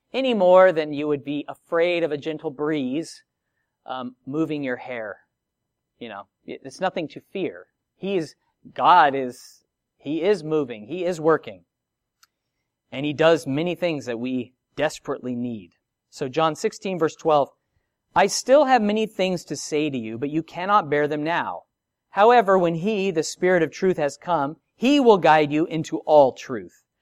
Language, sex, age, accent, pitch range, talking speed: English, male, 40-59, American, 135-185 Hz, 170 wpm